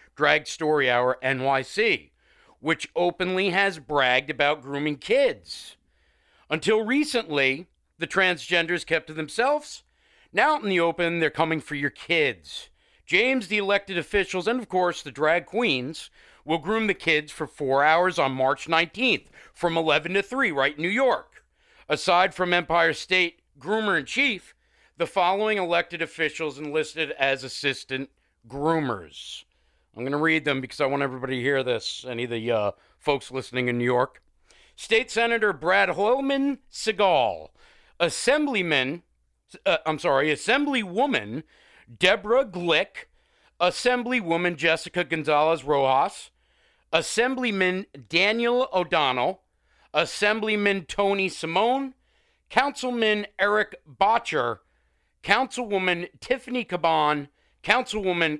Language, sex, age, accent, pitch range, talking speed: English, male, 40-59, American, 145-210 Hz, 120 wpm